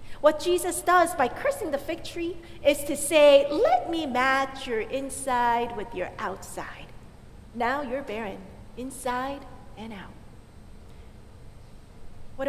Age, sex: 40-59, female